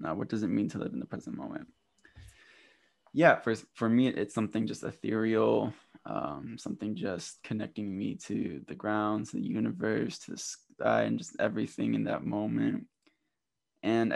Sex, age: male, 20-39